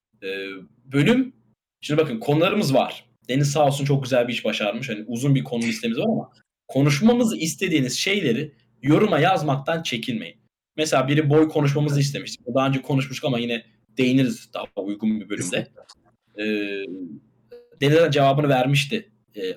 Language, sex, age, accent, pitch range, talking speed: Turkish, male, 20-39, native, 120-150 Hz, 140 wpm